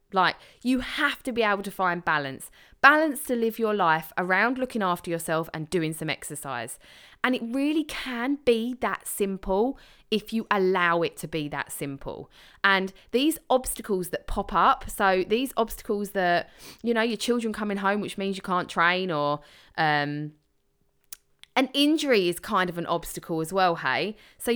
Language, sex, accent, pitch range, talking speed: English, female, British, 180-235 Hz, 175 wpm